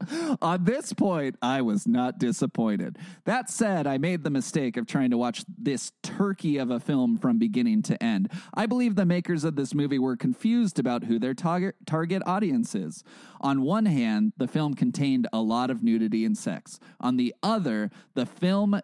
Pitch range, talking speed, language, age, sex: 140-220 Hz, 185 wpm, English, 30-49, male